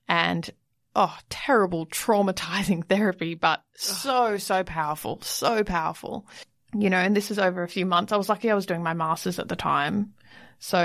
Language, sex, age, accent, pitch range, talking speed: English, female, 20-39, Australian, 175-210 Hz, 175 wpm